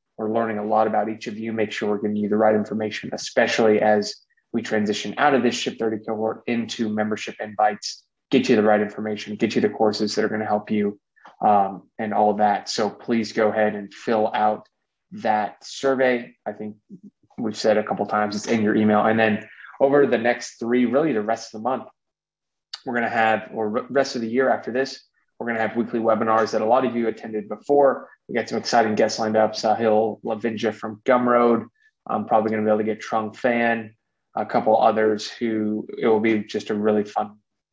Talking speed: 220 wpm